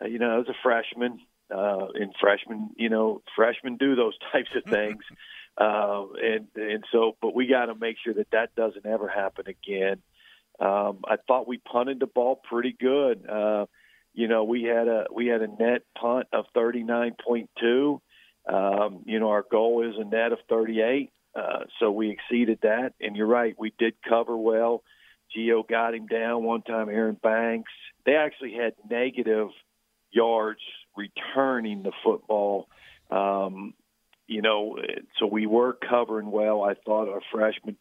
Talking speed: 170 wpm